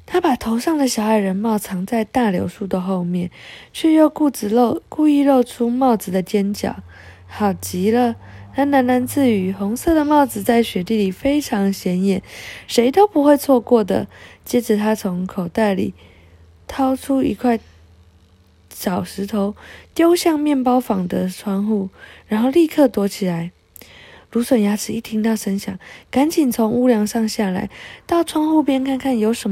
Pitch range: 200-275 Hz